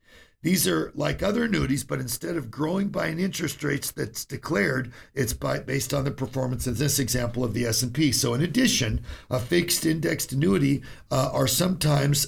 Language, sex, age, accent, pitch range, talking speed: English, male, 50-69, American, 125-160 Hz, 175 wpm